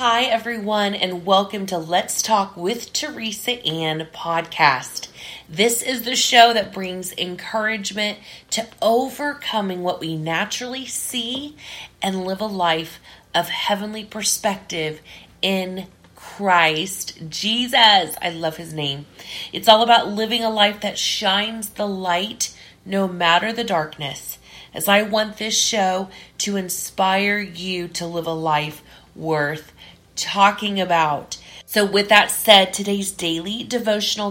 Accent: American